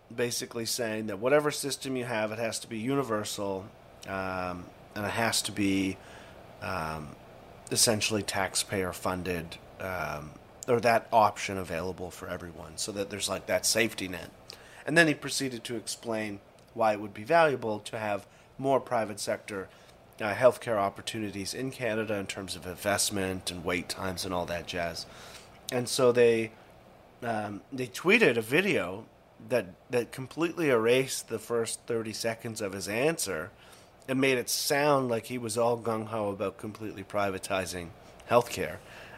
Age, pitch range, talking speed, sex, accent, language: 30-49, 95-115 Hz, 155 wpm, male, American, English